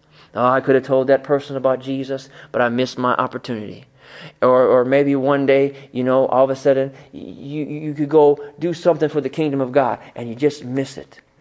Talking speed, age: 220 wpm, 30-49